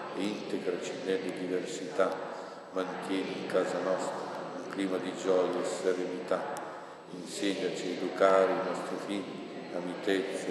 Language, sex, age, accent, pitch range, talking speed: Italian, male, 60-79, native, 90-95 Hz, 120 wpm